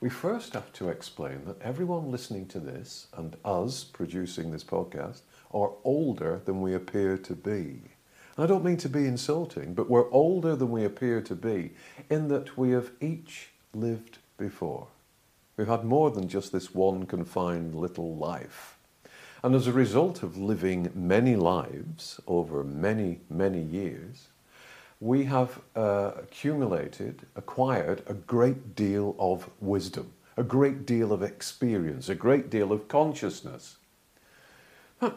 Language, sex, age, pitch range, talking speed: English, male, 50-69, 95-150 Hz, 145 wpm